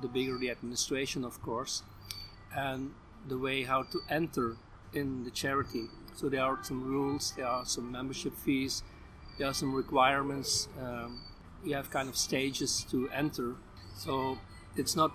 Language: English